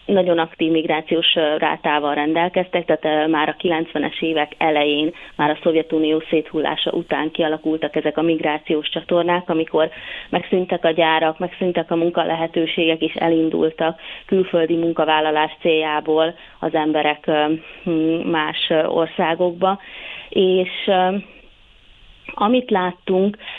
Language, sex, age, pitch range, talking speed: Hungarian, female, 30-49, 160-180 Hz, 105 wpm